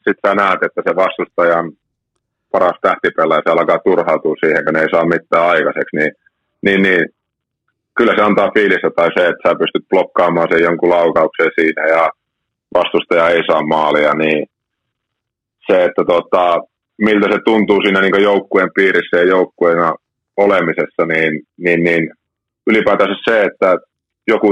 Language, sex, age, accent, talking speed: Finnish, male, 30-49, native, 150 wpm